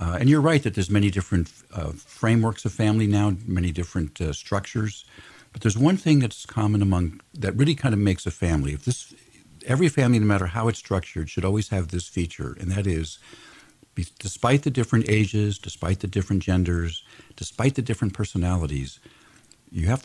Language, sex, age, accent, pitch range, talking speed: English, male, 50-69, American, 90-115 Hz, 190 wpm